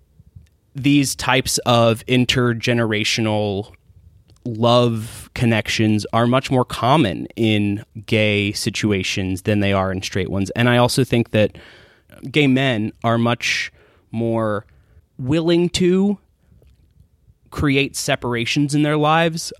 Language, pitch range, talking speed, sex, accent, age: English, 105-130 Hz, 110 wpm, male, American, 20-39